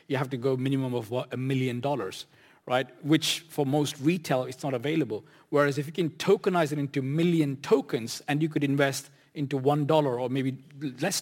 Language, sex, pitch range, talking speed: English, male, 125-155 Hz, 185 wpm